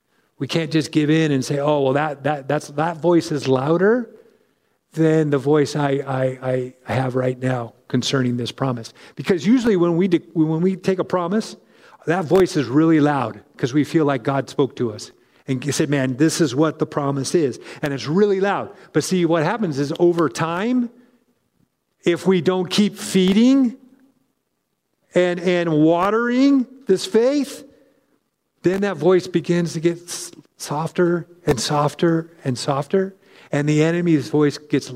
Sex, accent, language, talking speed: male, American, English, 165 wpm